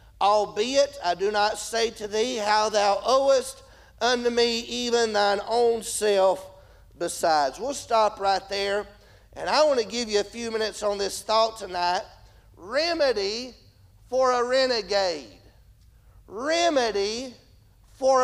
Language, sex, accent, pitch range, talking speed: English, male, American, 210-260 Hz, 130 wpm